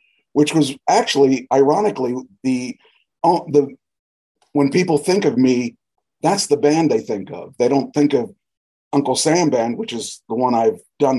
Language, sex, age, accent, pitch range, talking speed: English, male, 50-69, American, 100-135 Hz, 160 wpm